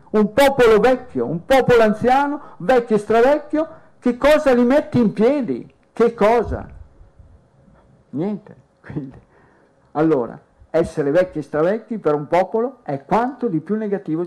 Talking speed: 135 wpm